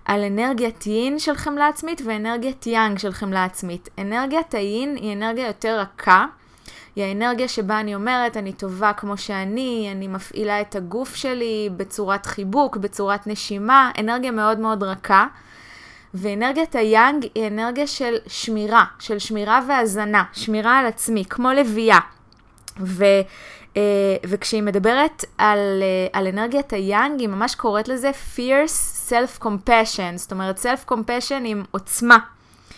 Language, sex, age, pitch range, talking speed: Hebrew, female, 20-39, 205-255 Hz, 130 wpm